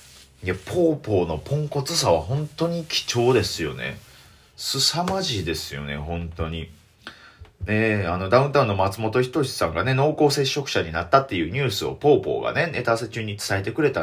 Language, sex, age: Japanese, male, 30-49